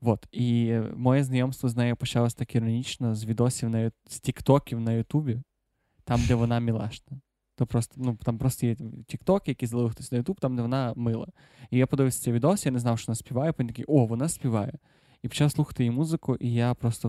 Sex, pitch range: male, 115-130 Hz